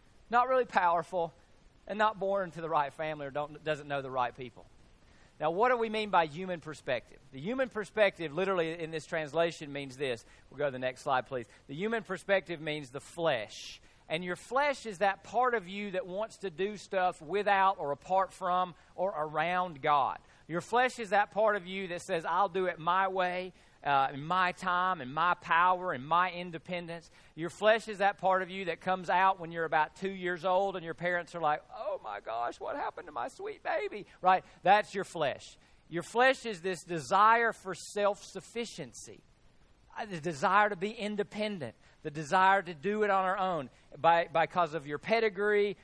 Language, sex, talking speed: English, male, 195 wpm